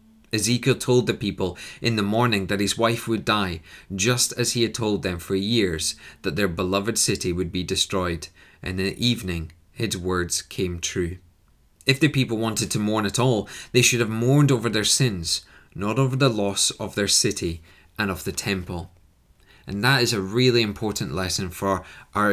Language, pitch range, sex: English, 95-115 Hz, male